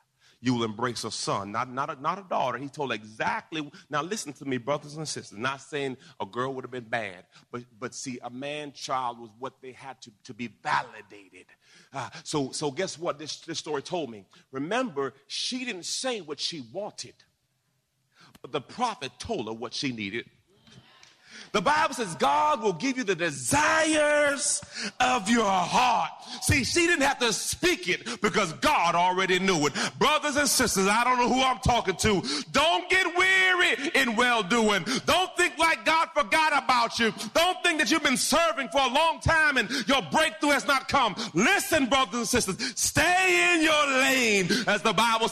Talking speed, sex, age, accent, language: 185 wpm, male, 40-59, American, English